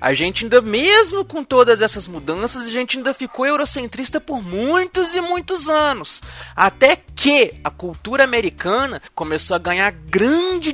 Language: Portuguese